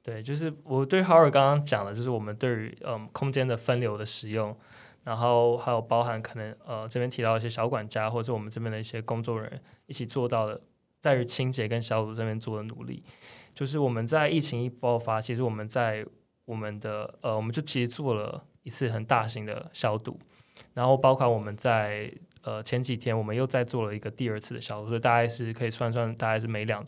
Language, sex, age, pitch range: Chinese, male, 20-39, 110-125 Hz